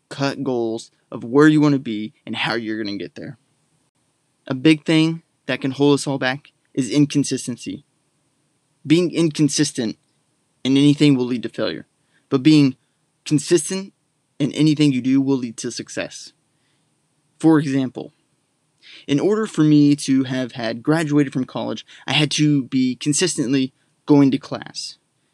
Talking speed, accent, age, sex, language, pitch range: 155 wpm, American, 20-39, male, English, 130-150 Hz